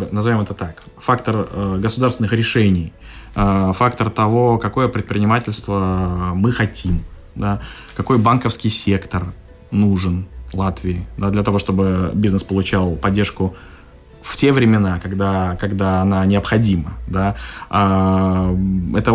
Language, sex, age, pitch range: Russian, male, 20-39, 95-120 Hz